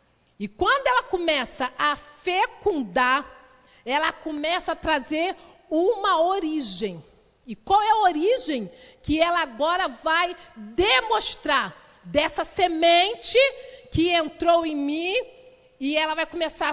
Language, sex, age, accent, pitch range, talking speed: Portuguese, female, 40-59, Brazilian, 255-355 Hz, 115 wpm